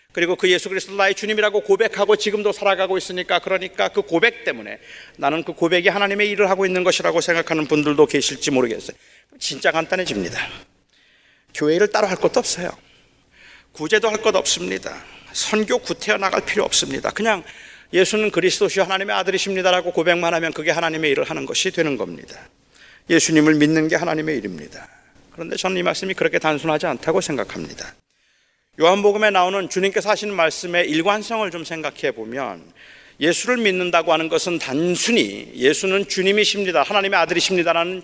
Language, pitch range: Korean, 165-210 Hz